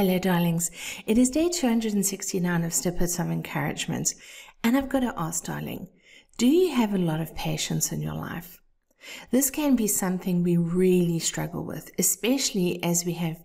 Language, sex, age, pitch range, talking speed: English, female, 50-69, 165-195 Hz, 170 wpm